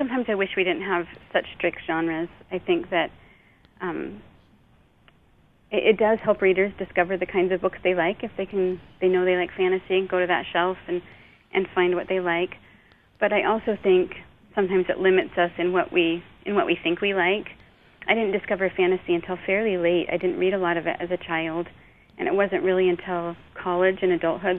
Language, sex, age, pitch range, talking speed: English, female, 40-59, 170-185 Hz, 205 wpm